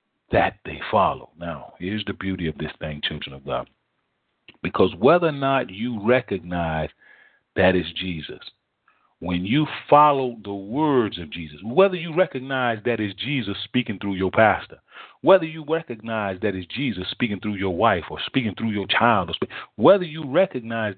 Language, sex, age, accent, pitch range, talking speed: English, male, 40-59, American, 100-155 Hz, 165 wpm